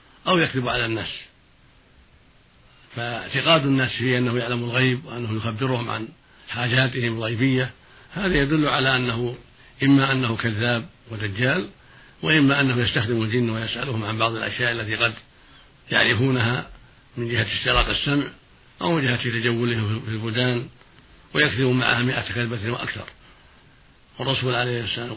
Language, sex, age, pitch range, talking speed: Arabic, male, 60-79, 115-130 Hz, 120 wpm